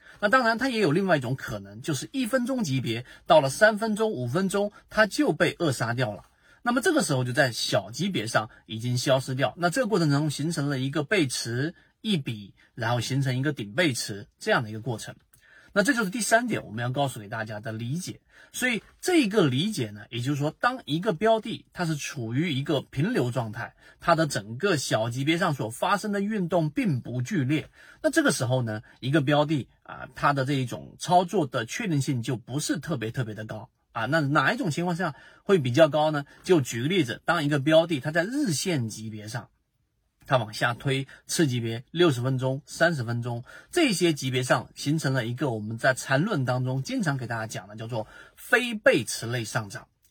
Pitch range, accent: 125-175 Hz, native